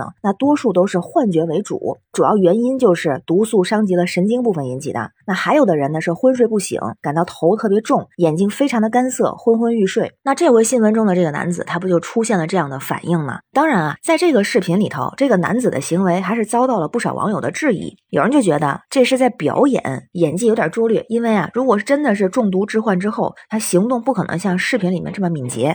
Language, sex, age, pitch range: Chinese, female, 30-49, 170-235 Hz